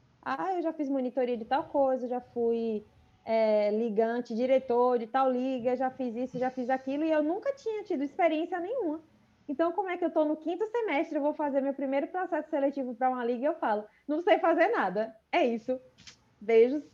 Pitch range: 245-310 Hz